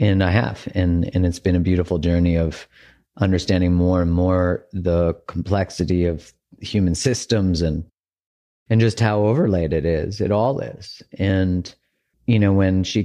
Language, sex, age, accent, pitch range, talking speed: English, male, 40-59, American, 85-100 Hz, 160 wpm